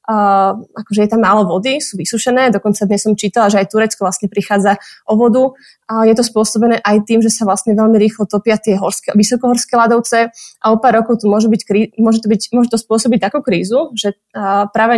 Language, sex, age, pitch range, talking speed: Slovak, female, 20-39, 210-235 Hz, 210 wpm